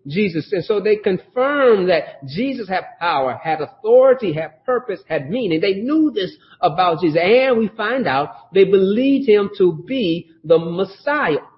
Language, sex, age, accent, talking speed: English, male, 40-59, American, 160 wpm